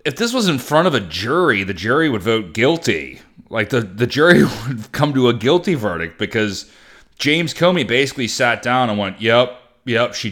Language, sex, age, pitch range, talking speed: English, male, 30-49, 95-130 Hz, 200 wpm